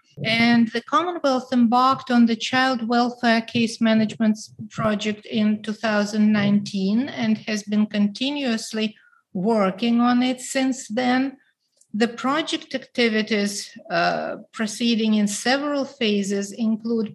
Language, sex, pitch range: English, female, 215-245 Hz